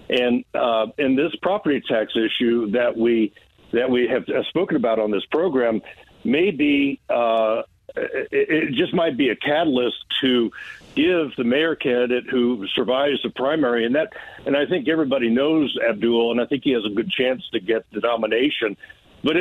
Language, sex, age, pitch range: English, male, 60-79, 110-135 Hz